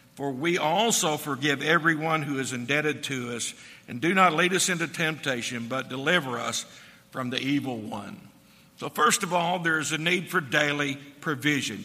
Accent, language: American, English